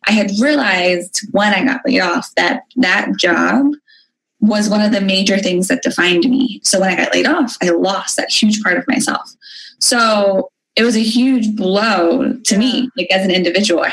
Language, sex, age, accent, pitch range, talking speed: English, female, 20-39, American, 185-265 Hz, 200 wpm